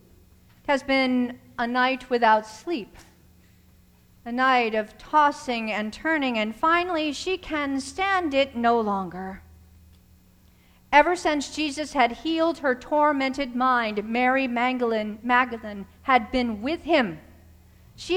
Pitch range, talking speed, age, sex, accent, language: 215-290 Hz, 115 wpm, 50-69, female, American, English